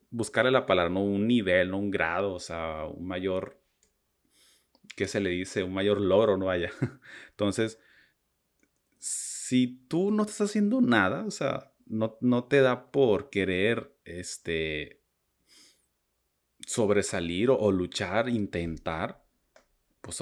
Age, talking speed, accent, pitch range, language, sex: 30-49, 130 wpm, Mexican, 90-115 Hz, Spanish, male